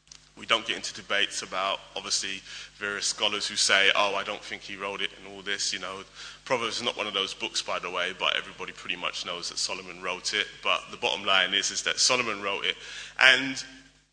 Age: 30-49